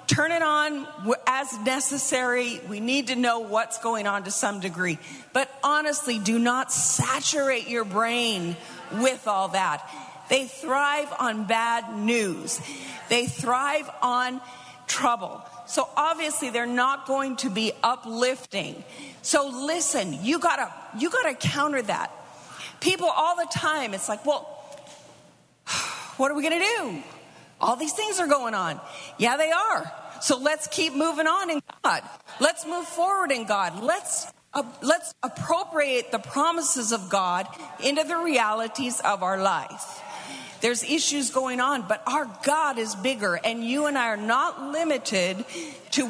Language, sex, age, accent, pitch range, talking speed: English, female, 40-59, American, 230-295 Hz, 150 wpm